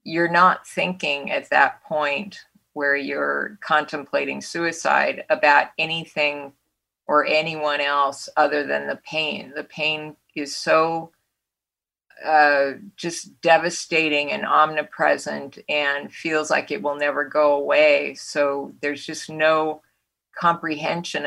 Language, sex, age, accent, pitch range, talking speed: English, female, 50-69, American, 145-165 Hz, 115 wpm